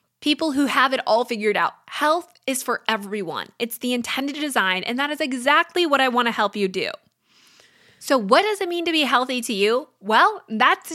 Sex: female